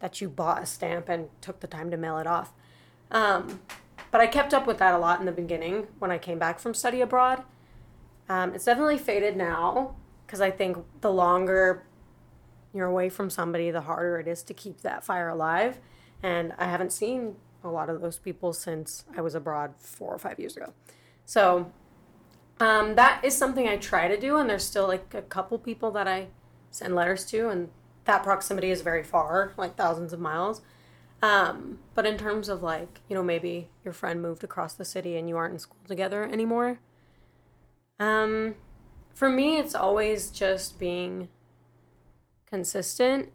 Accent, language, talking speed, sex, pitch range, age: American, English, 185 wpm, female, 170-210 Hz, 30-49